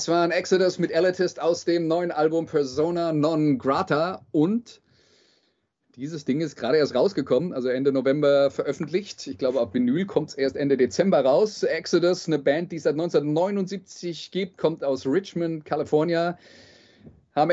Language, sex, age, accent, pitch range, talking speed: German, male, 30-49, German, 135-170 Hz, 160 wpm